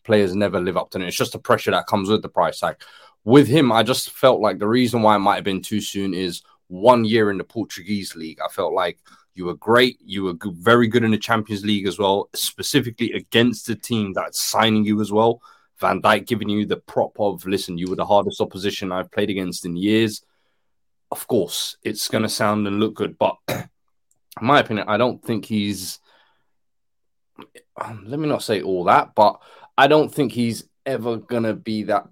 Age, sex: 20-39, male